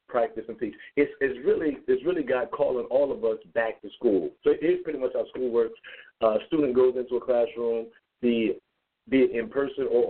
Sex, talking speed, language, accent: male, 215 wpm, English, American